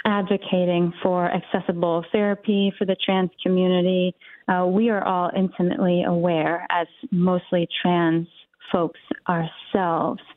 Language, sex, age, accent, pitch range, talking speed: English, female, 30-49, American, 175-190 Hz, 110 wpm